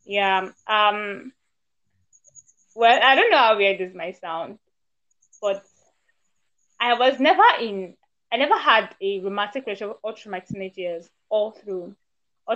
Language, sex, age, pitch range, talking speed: English, female, 20-39, 195-260 Hz, 140 wpm